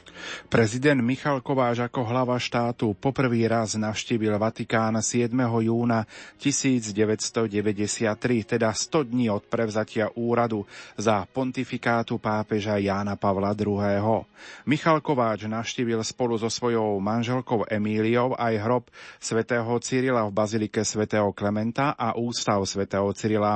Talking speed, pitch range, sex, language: 115 wpm, 105-120 Hz, male, Slovak